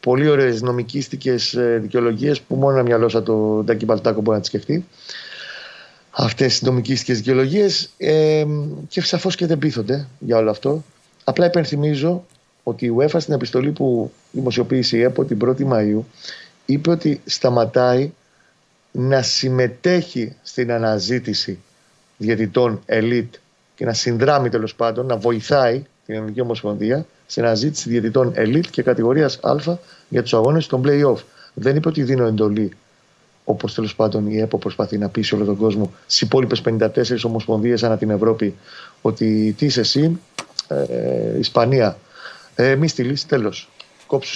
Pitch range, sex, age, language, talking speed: 115-145 Hz, male, 30-49, Greek, 145 wpm